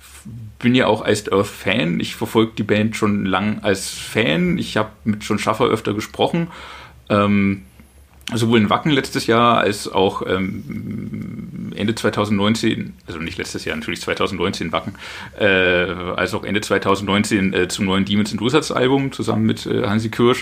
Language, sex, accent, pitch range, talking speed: German, male, German, 95-120 Hz, 160 wpm